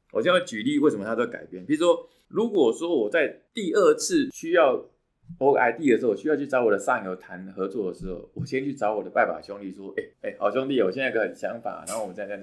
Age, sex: 20-39, male